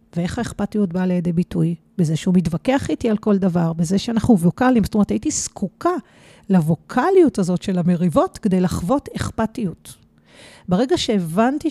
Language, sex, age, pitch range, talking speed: Hebrew, female, 40-59, 185-245 Hz, 145 wpm